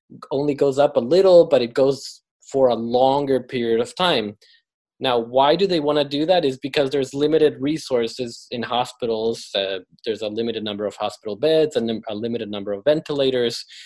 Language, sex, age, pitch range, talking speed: English, male, 20-39, 125-165 Hz, 185 wpm